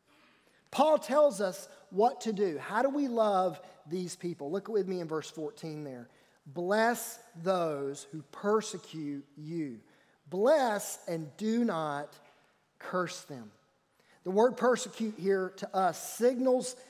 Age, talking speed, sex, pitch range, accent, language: 40-59, 130 wpm, male, 185-260 Hz, American, English